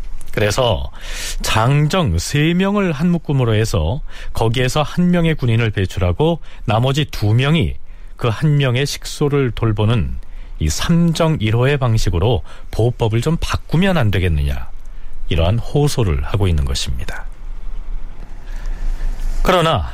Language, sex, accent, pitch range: Korean, male, native, 95-145 Hz